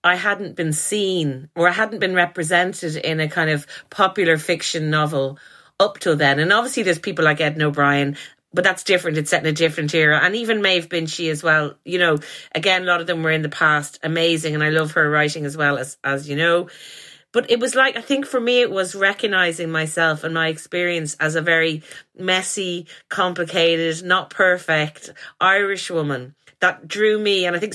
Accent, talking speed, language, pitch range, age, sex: Irish, 205 wpm, English, 155-190 Hz, 30-49, female